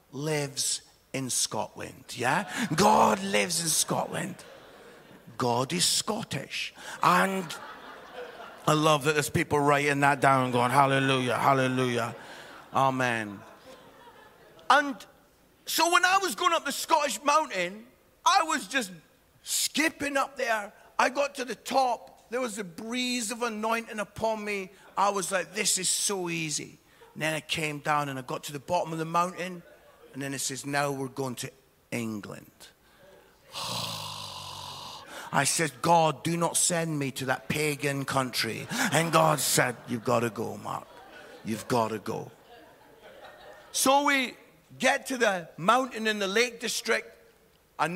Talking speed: 145 wpm